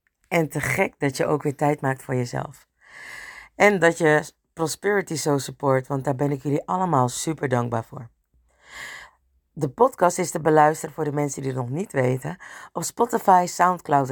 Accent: Dutch